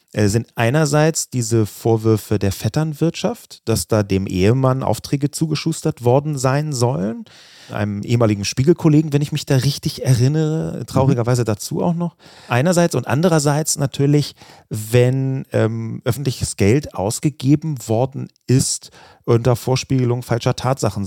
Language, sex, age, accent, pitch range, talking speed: German, male, 30-49, German, 110-150 Hz, 120 wpm